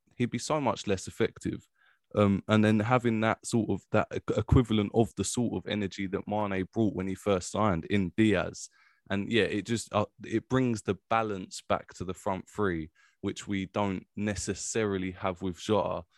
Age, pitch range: 20-39, 95-110 Hz